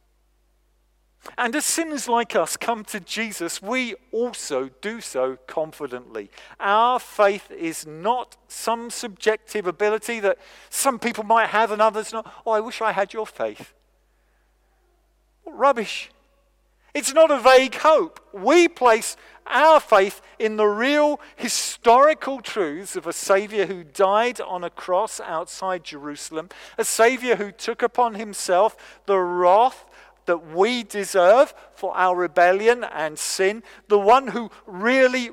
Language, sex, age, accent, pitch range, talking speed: English, male, 50-69, British, 175-235 Hz, 135 wpm